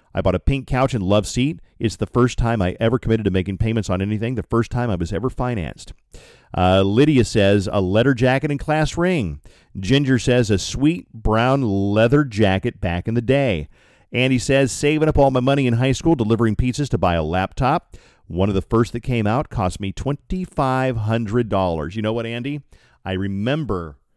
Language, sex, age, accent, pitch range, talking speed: English, male, 40-59, American, 95-130 Hz, 195 wpm